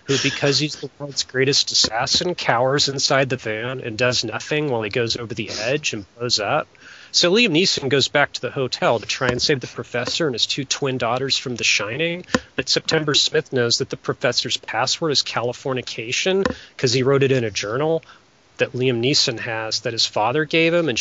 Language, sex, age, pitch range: English, male, 30-49, 120-150 Hz